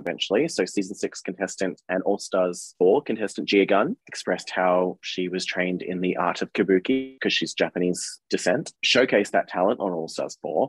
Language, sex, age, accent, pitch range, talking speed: English, male, 20-39, Australian, 90-105 Hz, 185 wpm